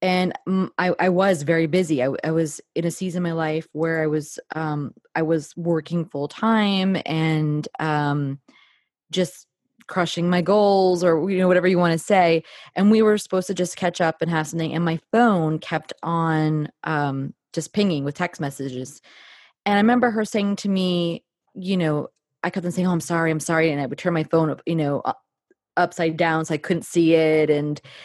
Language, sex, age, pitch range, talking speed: English, female, 20-39, 160-200 Hz, 205 wpm